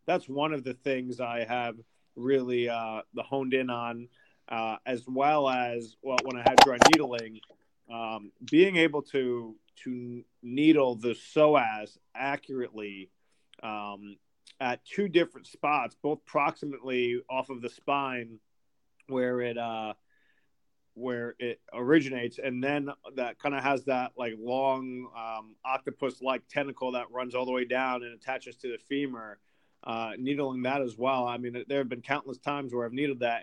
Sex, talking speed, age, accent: male, 160 wpm, 30-49, American